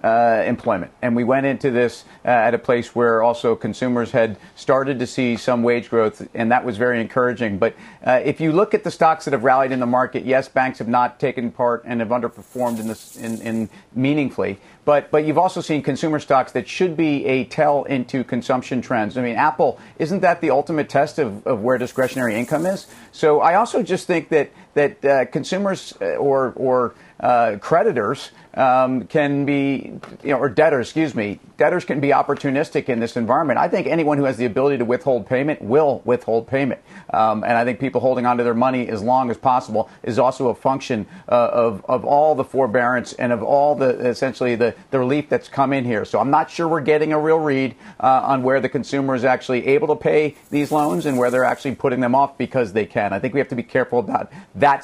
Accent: American